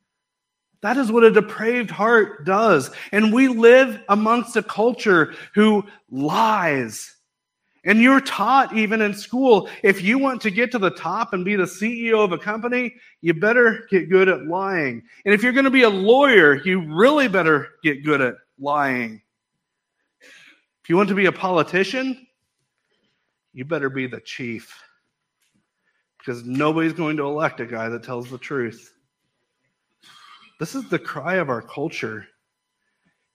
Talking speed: 155 wpm